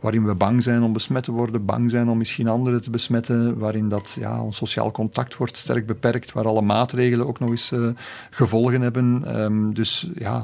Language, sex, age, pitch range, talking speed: Dutch, male, 50-69, 110-125 Hz, 205 wpm